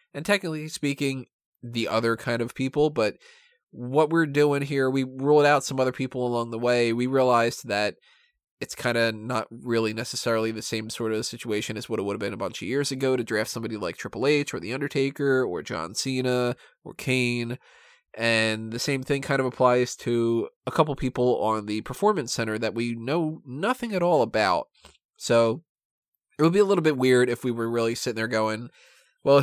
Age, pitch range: 20-39, 115-145 Hz